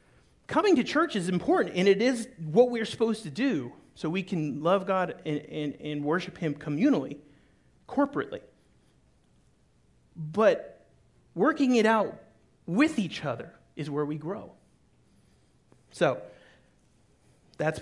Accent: American